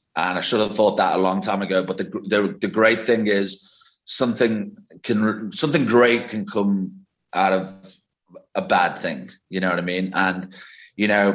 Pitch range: 100-120 Hz